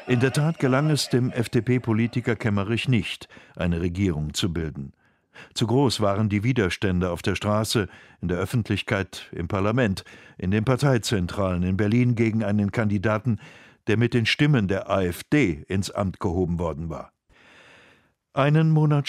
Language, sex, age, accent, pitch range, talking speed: German, male, 60-79, German, 95-120 Hz, 150 wpm